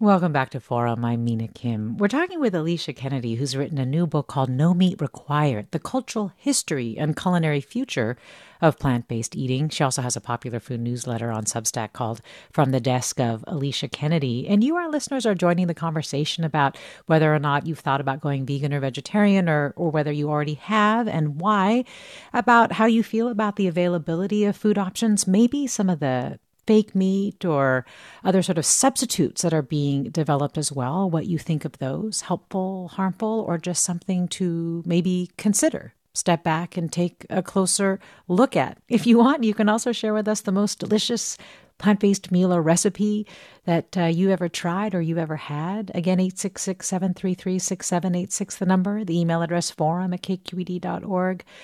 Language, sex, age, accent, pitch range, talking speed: English, female, 40-59, American, 150-200 Hz, 180 wpm